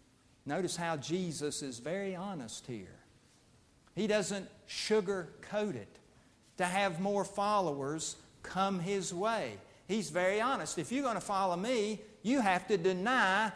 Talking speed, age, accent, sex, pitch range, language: 135 wpm, 50-69, American, male, 145-195 Hz, English